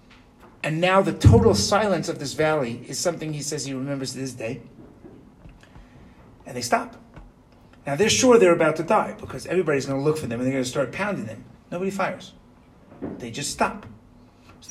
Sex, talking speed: male, 190 wpm